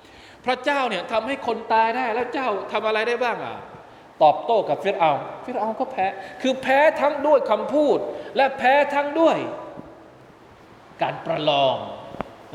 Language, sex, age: Thai, male, 20-39